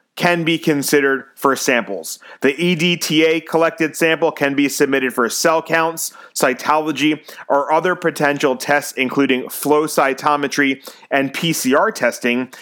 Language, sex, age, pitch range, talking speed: English, male, 30-49, 135-165 Hz, 125 wpm